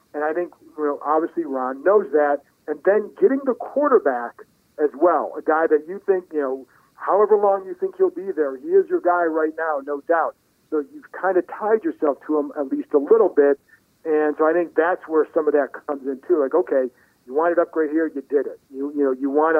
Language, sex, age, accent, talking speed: English, male, 50-69, American, 240 wpm